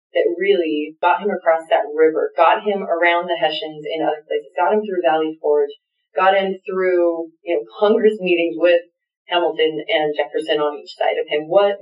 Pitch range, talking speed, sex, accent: 160-210 Hz, 190 wpm, female, American